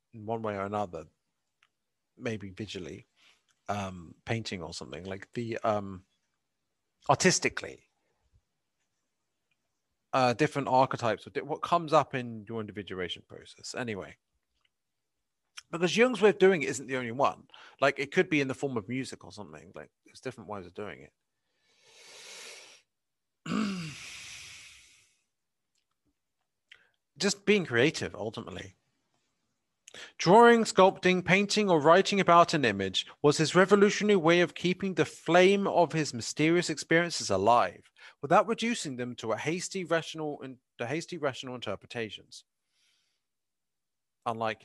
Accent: British